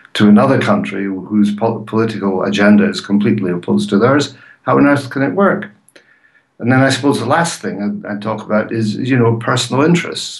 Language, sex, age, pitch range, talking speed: English, male, 60-79, 95-115 Hz, 195 wpm